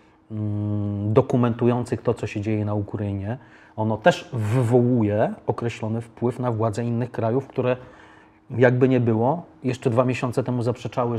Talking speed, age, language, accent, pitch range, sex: 135 wpm, 30-49, Polish, native, 115-130 Hz, male